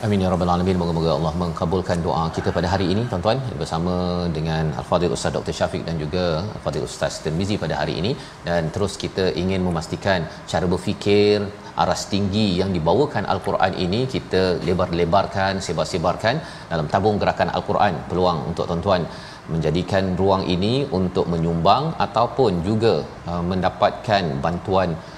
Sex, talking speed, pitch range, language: male, 140 wpm, 85-105 Hz, Malayalam